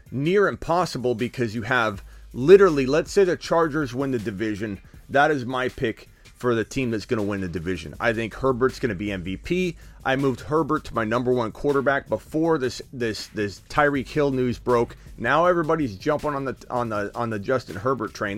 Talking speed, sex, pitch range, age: 200 wpm, male, 120-185 Hz, 30-49